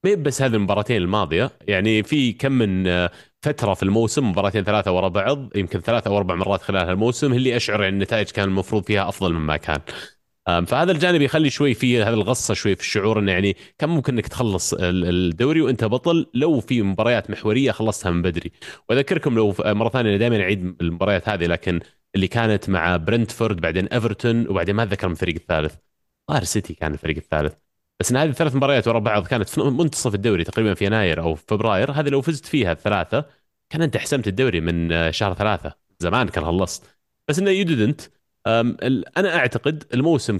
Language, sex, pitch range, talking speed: Arabic, male, 95-125 Hz, 180 wpm